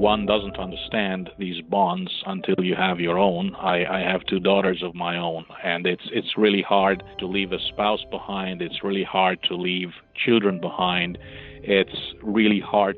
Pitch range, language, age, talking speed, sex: 95-105 Hz, English, 40-59, 175 wpm, male